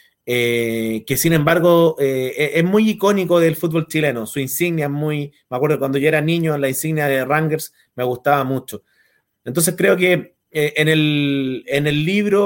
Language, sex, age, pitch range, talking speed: Portuguese, male, 30-49, 130-165 Hz, 180 wpm